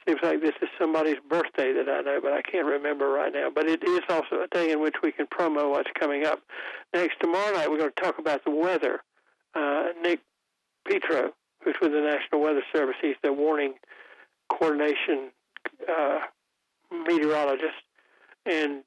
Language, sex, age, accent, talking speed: English, male, 60-79, American, 175 wpm